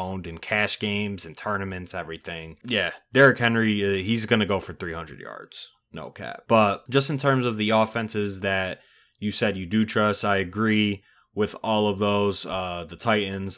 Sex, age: male, 20-39